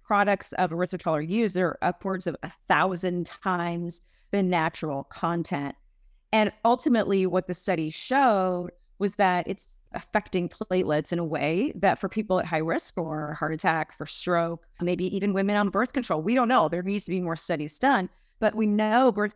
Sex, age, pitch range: female, 30-49, 170-215 Hz